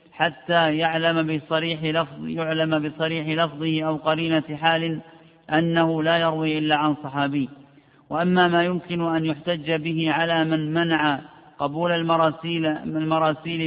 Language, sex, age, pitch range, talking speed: Arabic, male, 50-69, 160-170 Hz, 125 wpm